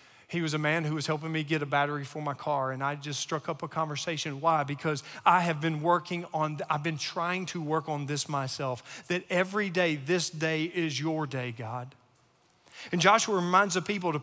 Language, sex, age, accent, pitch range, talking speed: English, male, 40-59, American, 155-210 Hz, 215 wpm